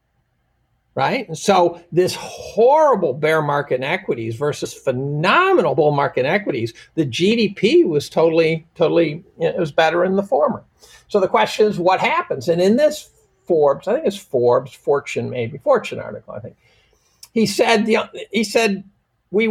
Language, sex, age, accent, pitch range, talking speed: English, male, 50-69, American, 160-220 Hz, 150 wpm